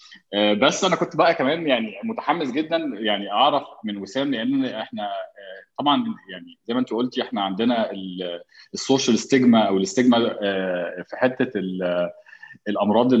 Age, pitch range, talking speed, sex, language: 20-39, 105-135 Hz, 135 wpm, male, Arabic